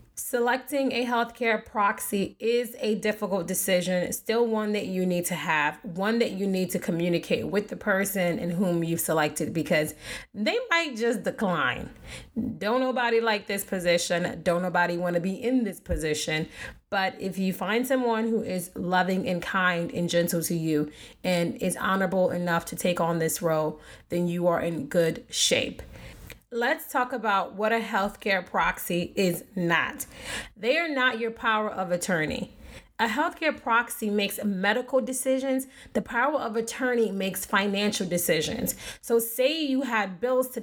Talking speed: 160 wpm